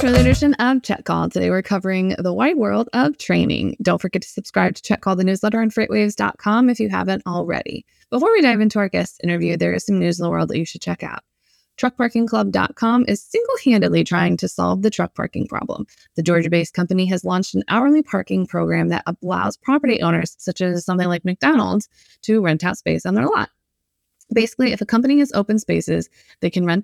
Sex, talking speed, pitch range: female, 210 wpm, 160-225 Hz